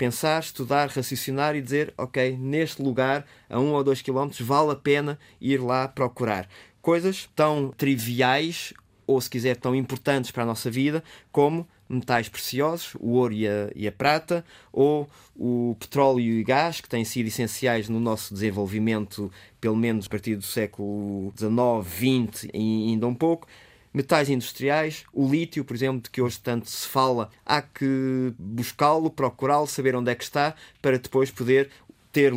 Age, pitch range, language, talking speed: 20-39, 115-145 Hz, Portuguese, 165 wpm